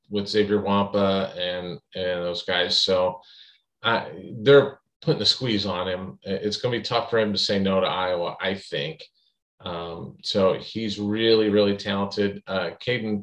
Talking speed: 170 wpm